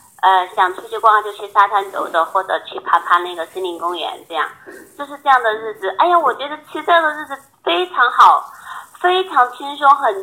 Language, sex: Chinese, female